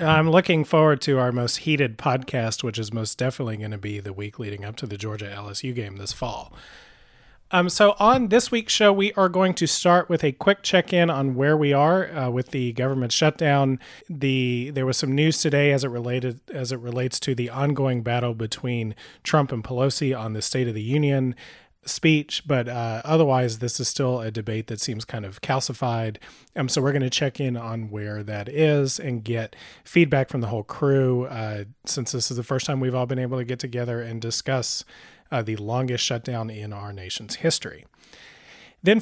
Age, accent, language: 30-49, American, English